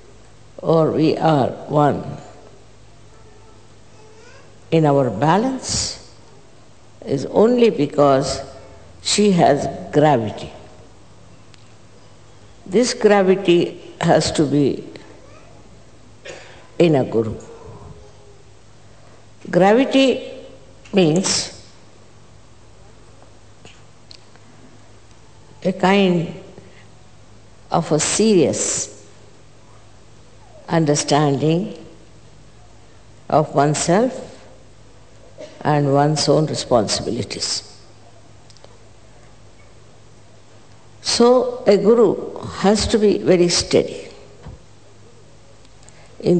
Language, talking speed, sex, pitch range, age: English, 55 wpm, female, 110-155 Hz, 60-79